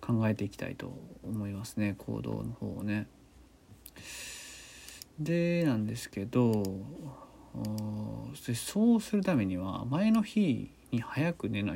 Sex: male